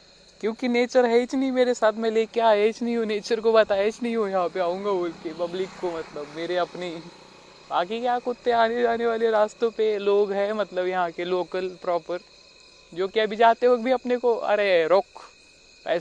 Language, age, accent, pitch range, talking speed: Marathi, 30-49, native, 170-210 Hz, 145 wpm